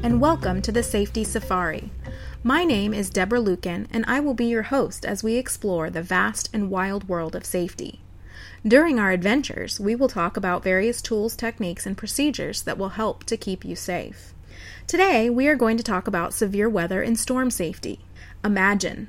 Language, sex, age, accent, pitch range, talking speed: English, female, 30-49, American, 185-235 Hz, 185 wpm